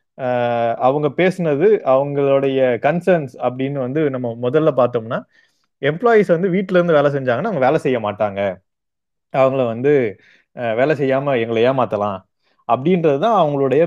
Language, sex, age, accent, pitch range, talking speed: Tamil, male, 30-49, native, 120-165 Hz, 120 wpm